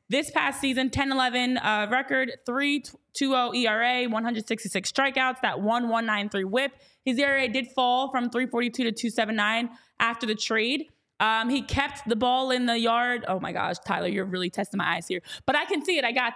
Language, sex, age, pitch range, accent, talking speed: English, female, 20-39, 210-255 Hz, American, 185 wpm